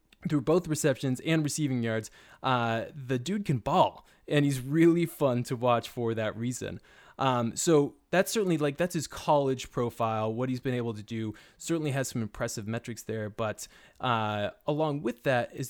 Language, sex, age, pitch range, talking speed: English, male, 20-39, 115-140 Hz, 180 wpm